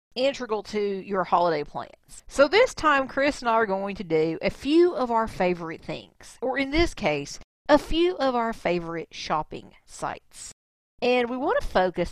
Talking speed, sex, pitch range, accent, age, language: 185 wpm, female, 160-215 Hz, American, 40-59, English